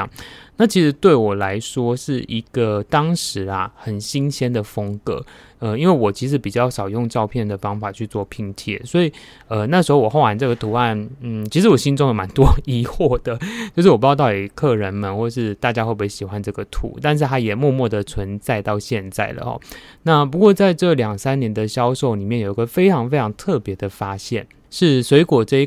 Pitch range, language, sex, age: 105-140 Hz, Chinese, male, 20-39